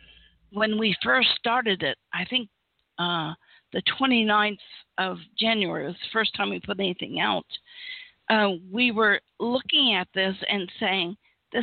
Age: 50-69